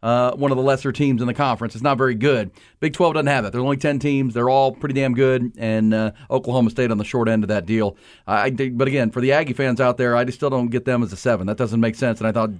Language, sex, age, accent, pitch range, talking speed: English, male, 40-59, American, 115-145 Hz, 315 wpm